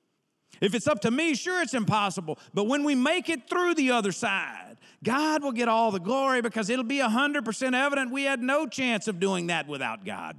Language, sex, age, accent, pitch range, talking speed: English, male, 50-69, American, 175-255 Hz, 215 wpm